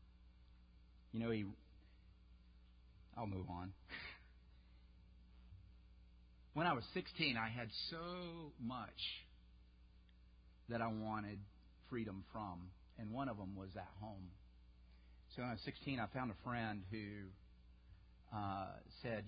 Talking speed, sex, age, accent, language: 120 wpm, male, 50-69, American, English